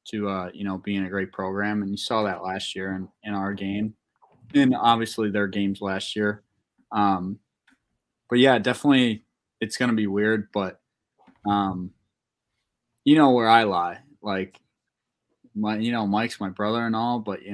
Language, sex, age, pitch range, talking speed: English, male, 20-39, 100-110 Hz, 170 wpm